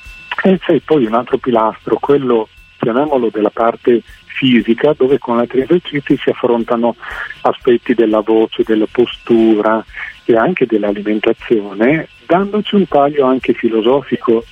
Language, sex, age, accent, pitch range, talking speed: Italian, male, 40-59, native, 110-130 Hz, 125 wpm